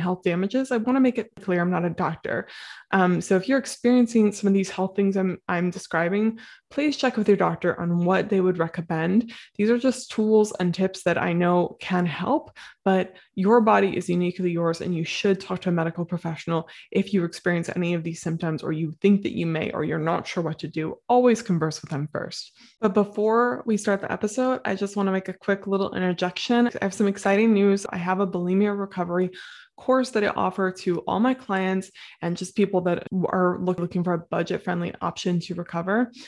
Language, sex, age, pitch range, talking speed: English, female, 20-39, 175-215 Hz, 215 wpm